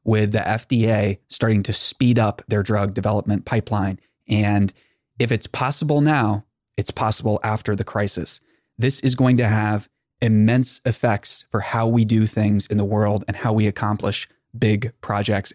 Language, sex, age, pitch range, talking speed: English, male, 20-39, 105-120 Hz, 160 wpm